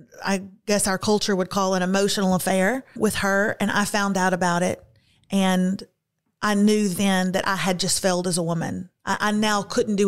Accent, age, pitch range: American, 40-59, 190-235 Hz